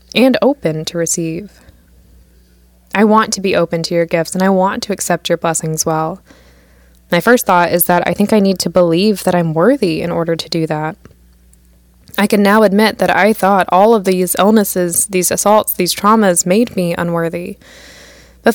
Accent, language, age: American, English, 20-39